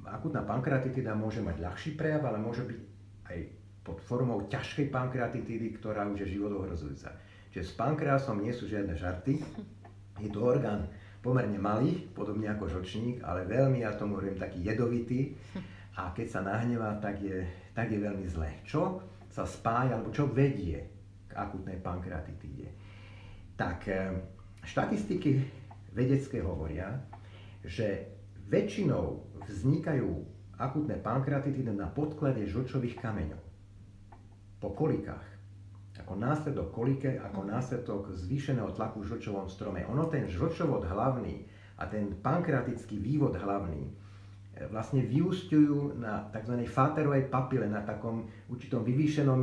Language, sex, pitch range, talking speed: Slovak, male, 100-130 Hz, 125 wpm